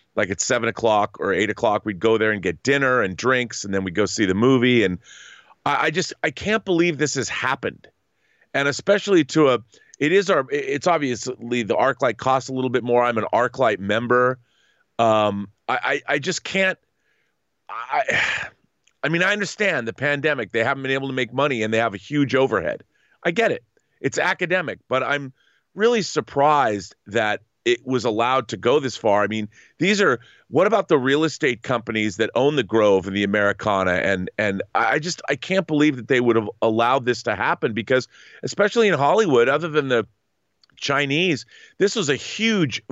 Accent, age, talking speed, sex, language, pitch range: American, 30-49, 195 wpm, male, English, 115-150 Hz